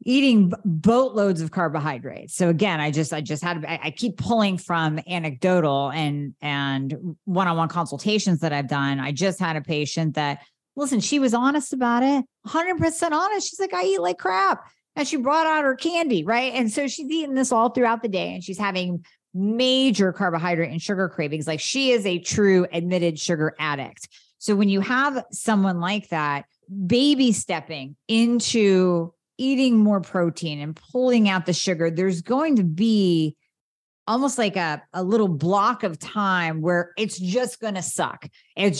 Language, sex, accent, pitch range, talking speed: English, female, American, 170-225 Hz, 175 wpm